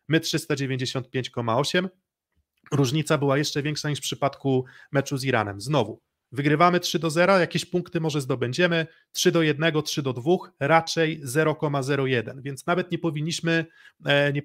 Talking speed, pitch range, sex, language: 140 wpm, 135-170 Hz, male, Polish